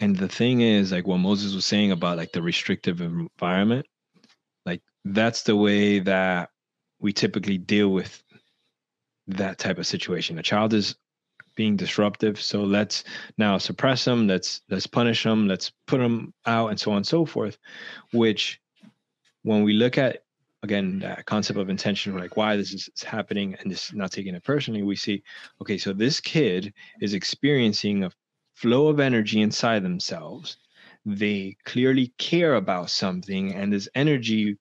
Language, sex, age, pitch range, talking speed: English, male, 20-39, 100-115 Hz, 165 wpm